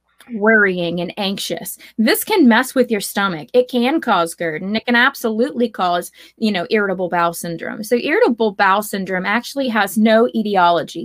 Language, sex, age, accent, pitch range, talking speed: English, female, 20-39, American, 185-235 Hz, 170 wpm